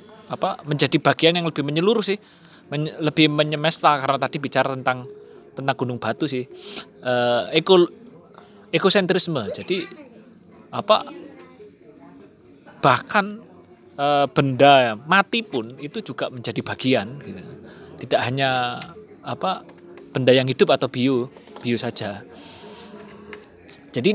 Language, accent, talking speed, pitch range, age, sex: Indonesian, native, 110 wpm, 125-165 Hz, 20-39, male